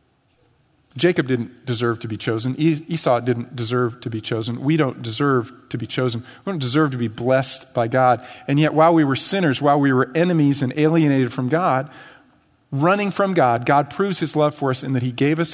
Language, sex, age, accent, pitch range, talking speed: English, male, 40-59, American, 120-160 Hz, 210 wpm